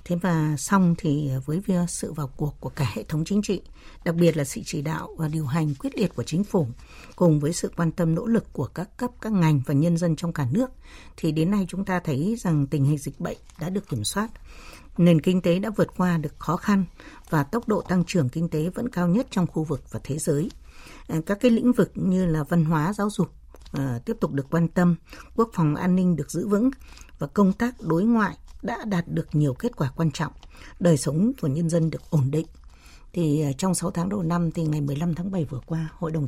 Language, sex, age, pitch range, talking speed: Vietnamese, female, 60-79, 155-195 Hz, 240 wpm